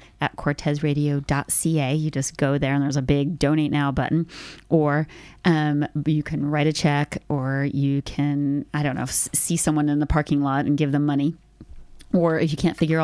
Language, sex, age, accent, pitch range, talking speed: English, female, 30-49, American, 145-175 Hz, 190 wpm